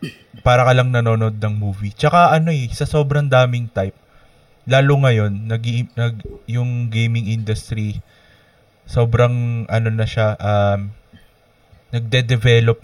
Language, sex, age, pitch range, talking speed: Filipino, male, 20-39, 105-125 Hz, 120 wpm